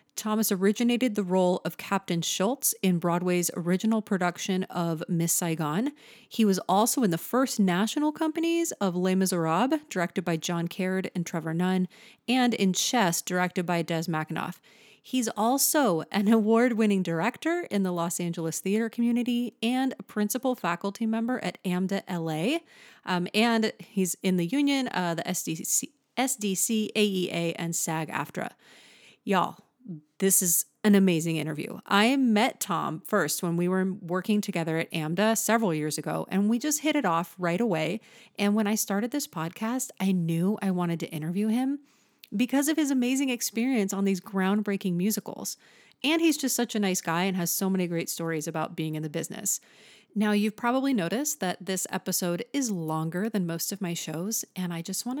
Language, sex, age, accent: English, female, 30-49, American